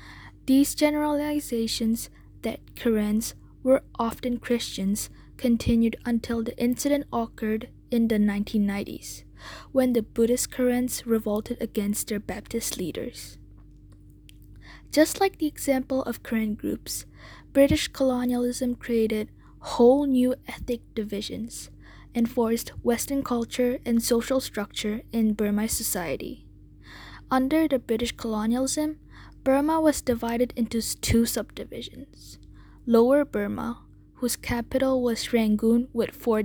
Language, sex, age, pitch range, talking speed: English, female, 10-29, 220-255 Hz, 110 wpm